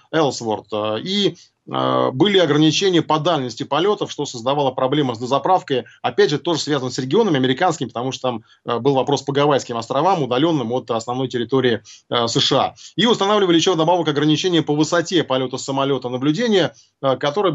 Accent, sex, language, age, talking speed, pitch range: native, male, Russian, 20-39, 160 wpm, 130-160 Hz